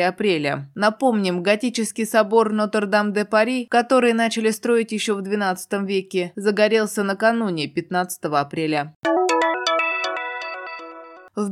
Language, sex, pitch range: Russian, female, 190-230 Hz